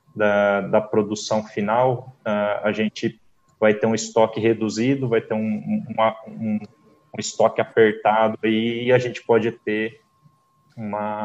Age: 20-39